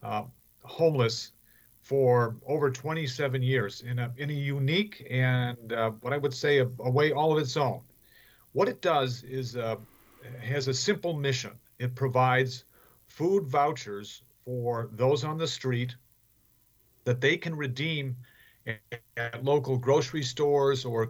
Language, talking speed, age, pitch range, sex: English, 145 wpm, 50-69, 115-135 Hz, male